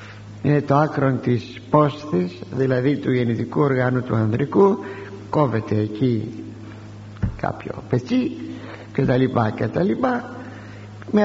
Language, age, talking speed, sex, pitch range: Greek, 60-79, 95 wpm, male, 105-160 Hz